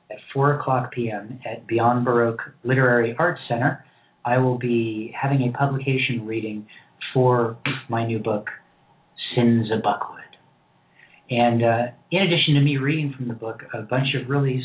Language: English